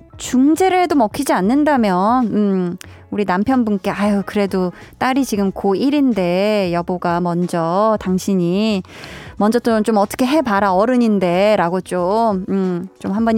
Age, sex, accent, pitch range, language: 20-39, female, native, 200-265 Hz, Korean